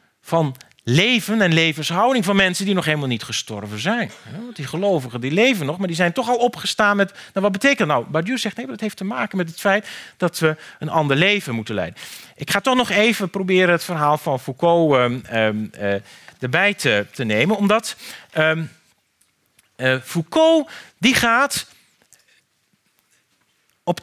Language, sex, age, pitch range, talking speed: Dutch, male, 40-59, 135-225 Hz, 180 wpm